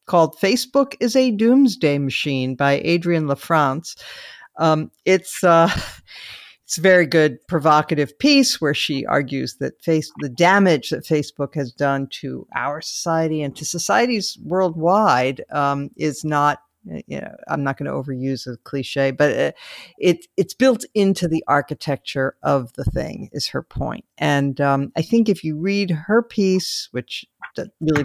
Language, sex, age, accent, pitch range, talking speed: English, female, 50-69, American, 140-180 Hz, 150 wpm